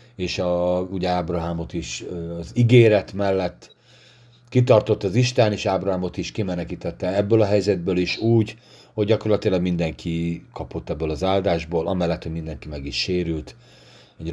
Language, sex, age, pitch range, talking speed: Hungarian, male, 40-59, 90-120 Hz, 140 wpm